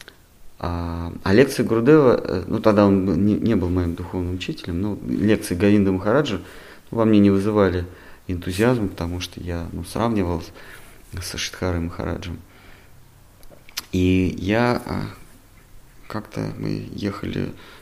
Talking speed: 115 wpm